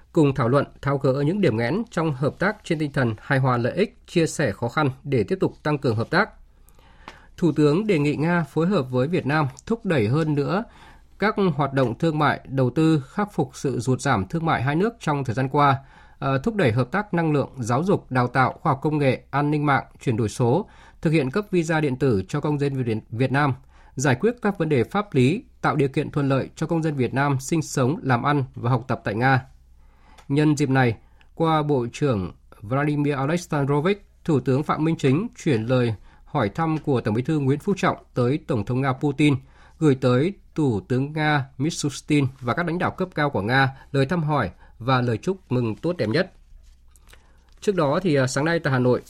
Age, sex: 20-39, male